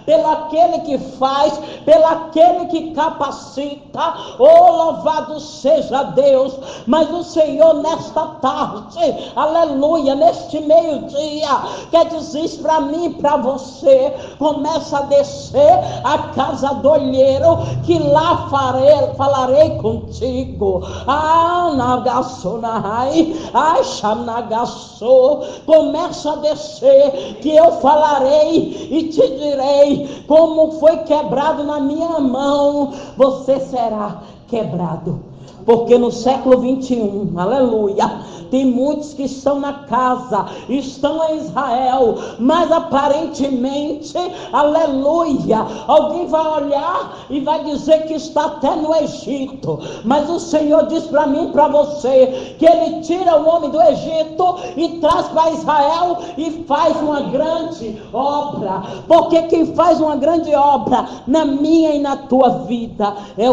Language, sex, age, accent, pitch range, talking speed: Portuguese, male, 60-79, Brazilian, 260-315 Hz, 120 wpm